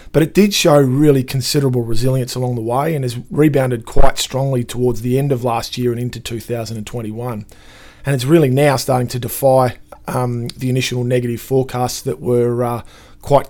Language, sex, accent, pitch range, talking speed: English, male, Australian, 125-140 Hz, 180 wpm